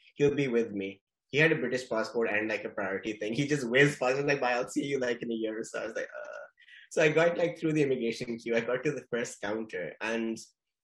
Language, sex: English, male